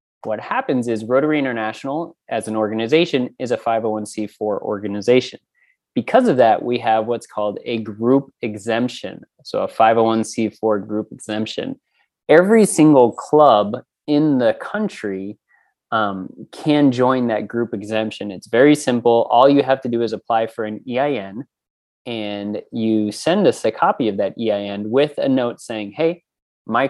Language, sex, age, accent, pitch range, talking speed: English, male, 30-49, American, 110-135 Hz, 150 wpm